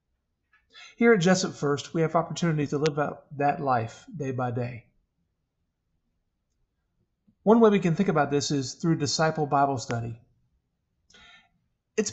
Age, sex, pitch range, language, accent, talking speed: 40-59, male, 130-185 Hz, English, American, 140 wpm